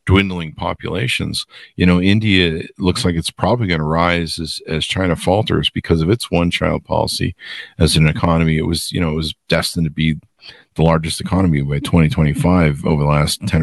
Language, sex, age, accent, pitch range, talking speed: English, male, 40-59, American, 80-90 Hz, 190 wpm